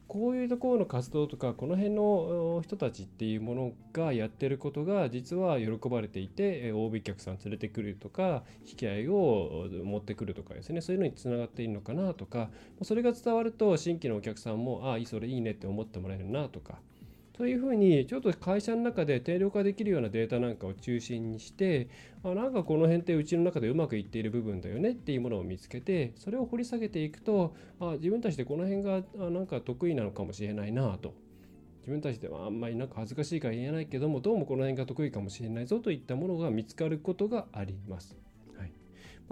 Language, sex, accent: Japanese, male, native